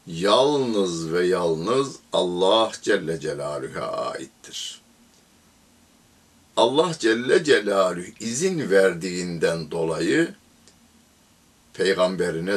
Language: Turkish